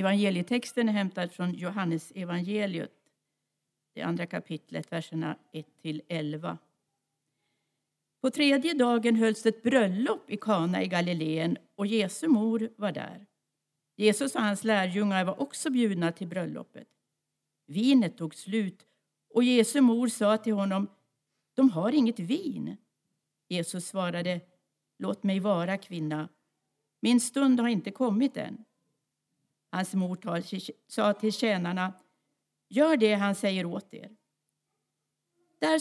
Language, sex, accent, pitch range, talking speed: Swedish, female, native, 175-230 Hz, 120 wpm